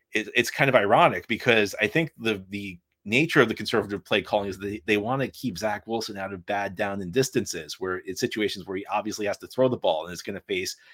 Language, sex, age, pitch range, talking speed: English, male, 30-49, 100-125 Hz, 255 wpm